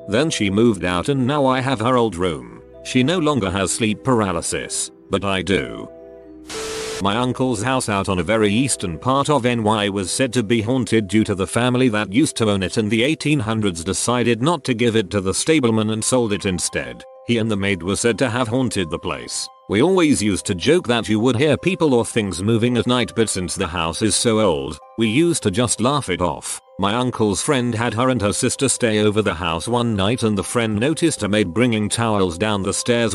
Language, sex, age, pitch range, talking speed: English, male, 40-59, 100-125 Hz, 225 wpm